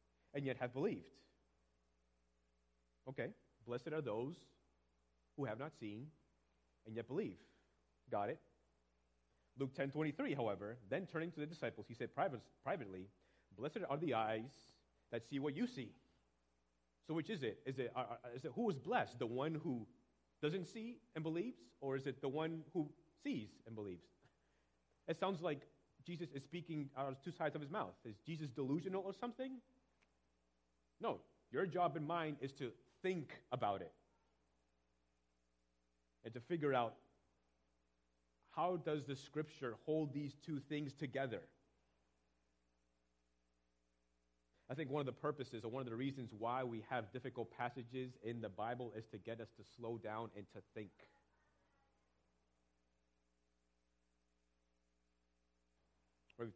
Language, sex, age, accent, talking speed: English, male, 30-49, American, 145 wpm